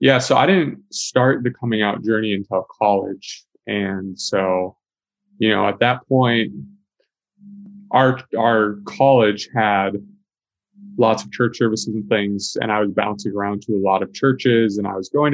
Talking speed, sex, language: 165 wpm, male, English